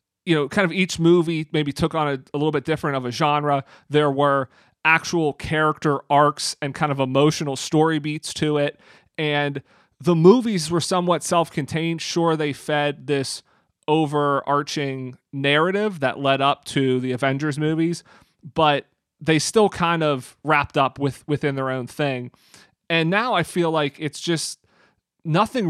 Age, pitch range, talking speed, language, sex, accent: 30-49, 140-165 Hz, 160 wpm, English, male, American